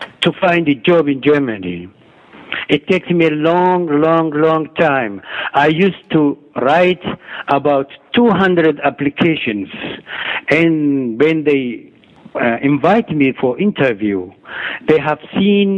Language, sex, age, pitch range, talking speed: English, male, 60-79, 140-175 Hz, 120 wpm